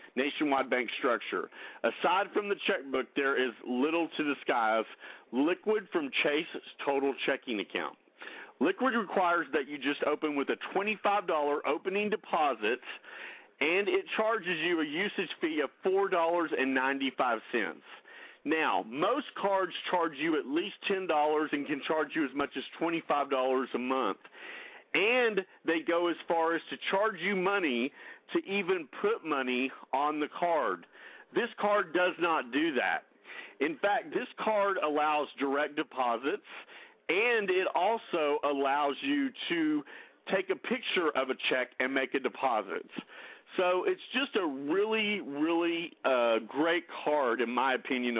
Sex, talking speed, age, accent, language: male, 140 wpm, 40-59, American, English